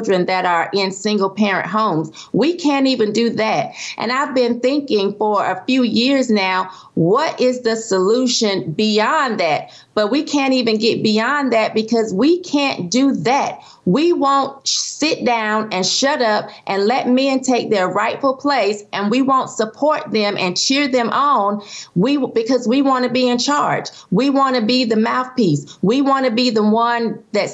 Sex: female